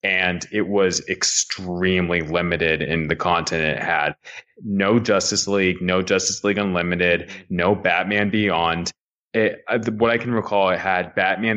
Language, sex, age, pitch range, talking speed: English, male, 20-39, 95-110 Hz, 140 wpm